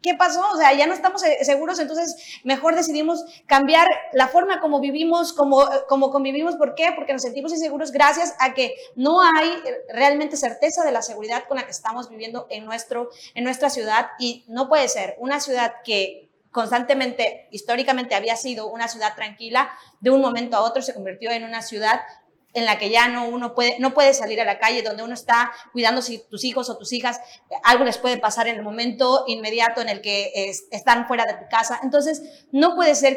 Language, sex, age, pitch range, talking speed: Spanish, female, 30-49, 235-285 Hz, 205 wpm